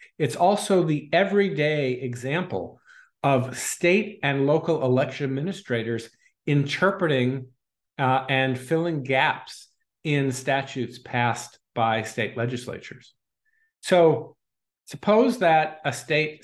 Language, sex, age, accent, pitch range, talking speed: English, male, 50-69, American, 125-175 Hz, 100 wpm